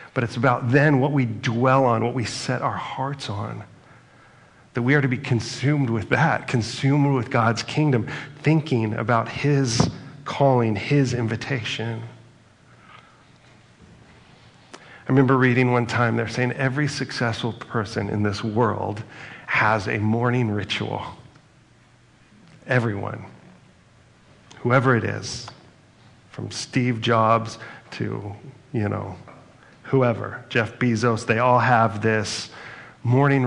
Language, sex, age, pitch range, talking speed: English, male, 40-59, 110-130 Hz, 120 wpm